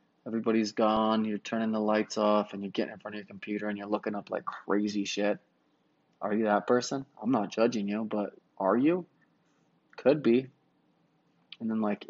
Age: 20-39